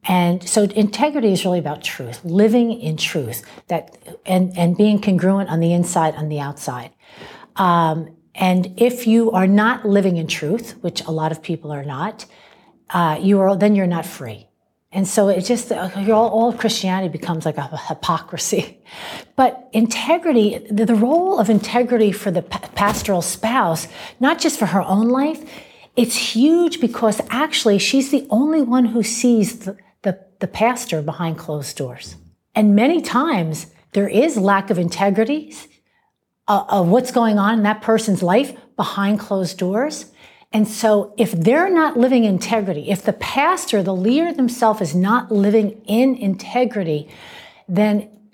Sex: female